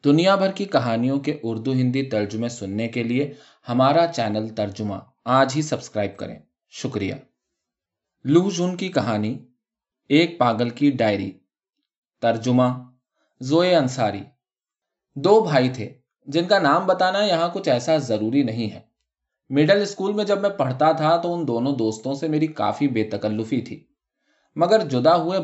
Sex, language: male, Urdu